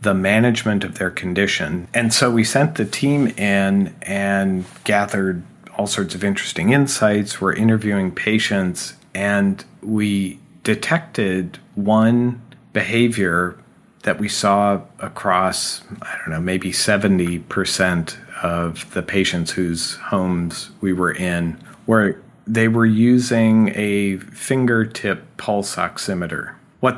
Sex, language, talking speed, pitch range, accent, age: male, English, 120 wpm, 95-115 Hz, American, 40-59